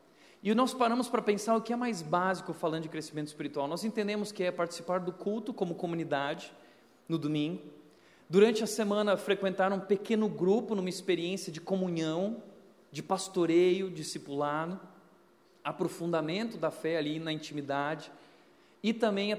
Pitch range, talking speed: 160-200 Hz, 150 wpm